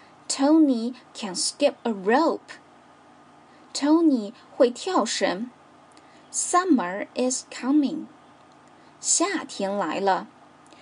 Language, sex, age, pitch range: Chinese, female, 10-29, 230-295 Hz